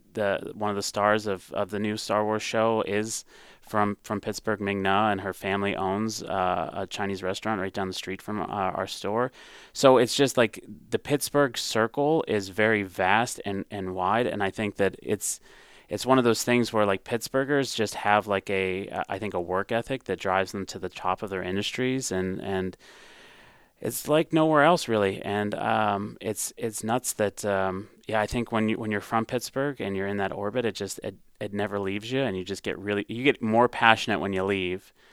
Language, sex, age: English, male, 30-49